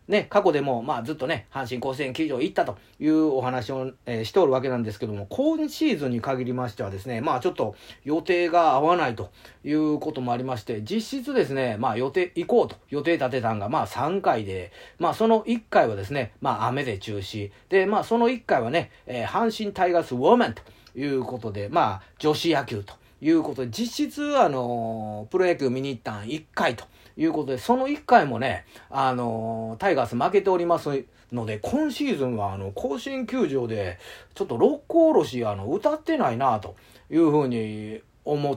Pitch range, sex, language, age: 115-175 Hz, male, Japanese, 40-59